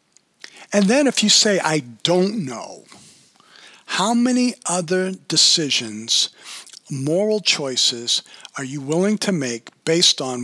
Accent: American